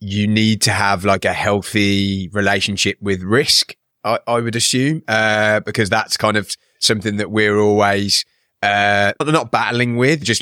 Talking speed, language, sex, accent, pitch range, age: 160 wpm, English, male, British, 105-120 Hz, 30-49